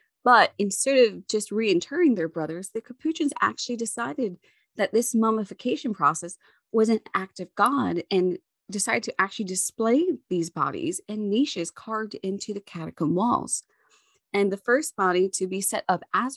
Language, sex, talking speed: English, female, 160 wpm